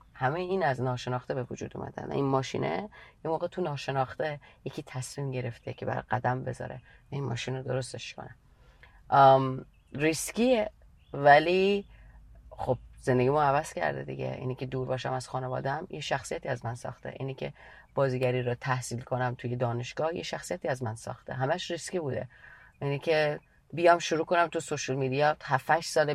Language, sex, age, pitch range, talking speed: English, female, 30-49, 130-170 Hz, 160 wpm